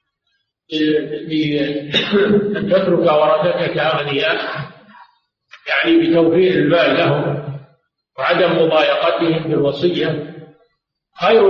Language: Arabic